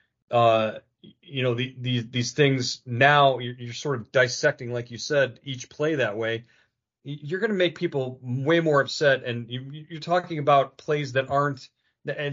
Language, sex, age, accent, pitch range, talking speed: English, male, 40-59, American, 115-145 Hz, 180 wpm